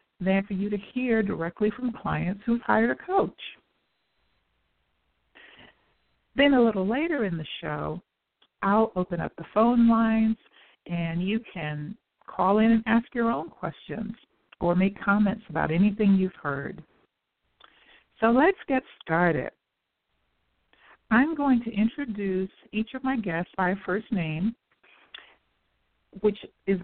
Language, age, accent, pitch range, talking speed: English, 50-69, American, 170-225 Hz, 130 wpm